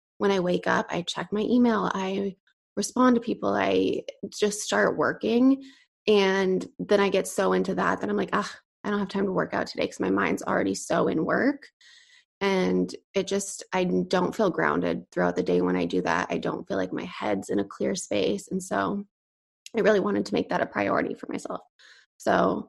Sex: female